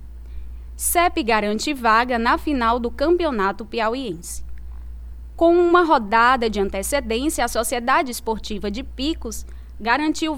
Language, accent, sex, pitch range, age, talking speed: Portuguese, Brazilian, female, 210-280 Hz, 10-29, 110 wpm